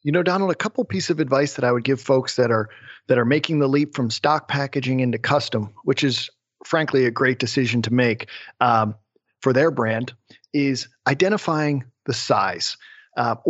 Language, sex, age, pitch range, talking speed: English, male, 40-59, 125-155 Hz, 185 wpm